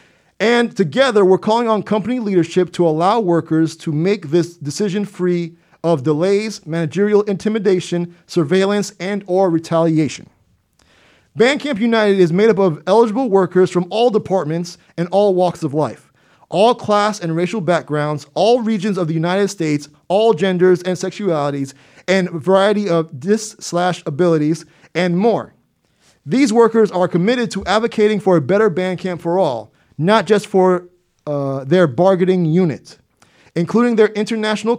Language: English